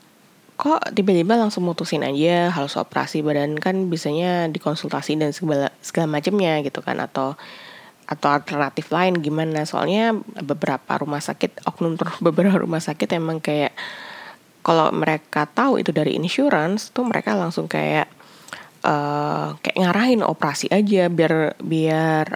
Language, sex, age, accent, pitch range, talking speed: Indonesian, female, 20-39, native, 155-200 Hz, 135 wpm